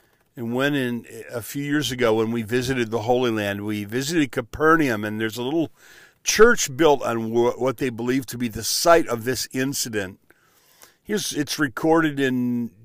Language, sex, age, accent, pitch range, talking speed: English, male, 50-69, American, 115-140 Hz, 175 wpm